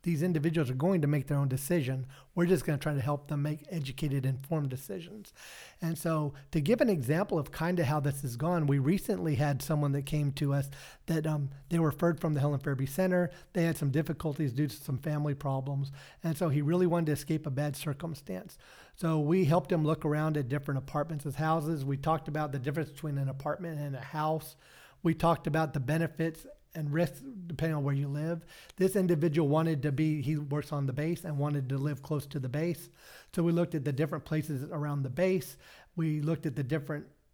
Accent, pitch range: American, 145-170 Hz